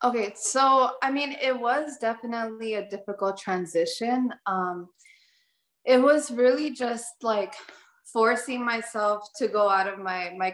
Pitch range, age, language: 200-265 Hz, 20-39, English